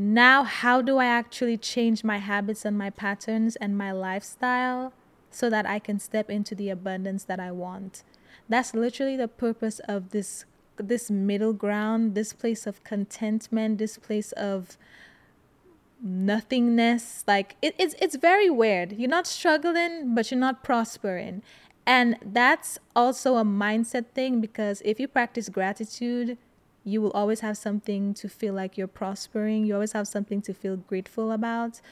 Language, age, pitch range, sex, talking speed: English, 20-39, 200-240 Hz, female, 155 wpm